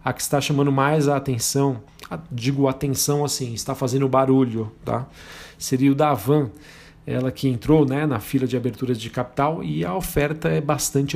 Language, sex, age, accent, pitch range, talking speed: Portuguese, male, 40-59, Brazilian, 125-145 Hz, 190 wpm